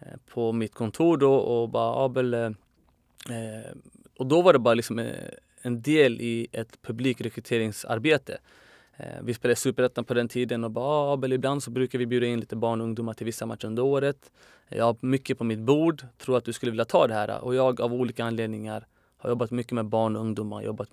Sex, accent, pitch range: male, native, 115-135 Hz